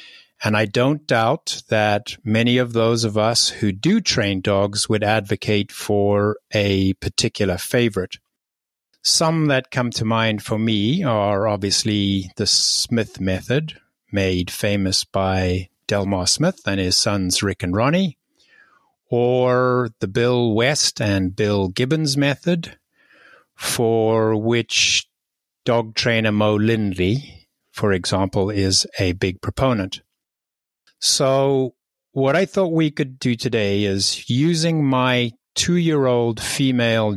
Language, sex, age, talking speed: English, male, 50-69, 125 wpm